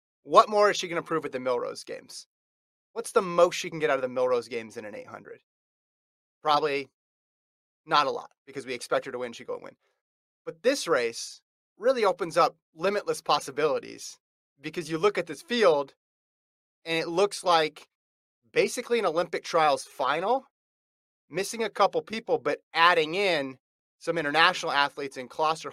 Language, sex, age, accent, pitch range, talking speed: English, male, 30-49, American, 150-250 Hz, 175 wpm